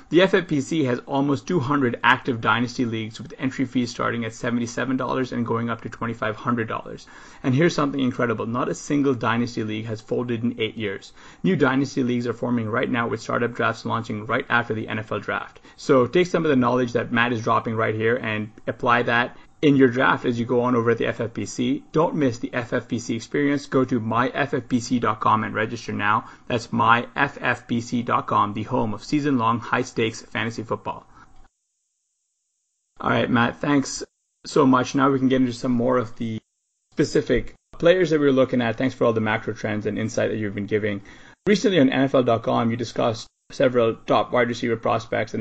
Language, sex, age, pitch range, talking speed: English, male, 30-49, 115-130 Hz, 185 wpm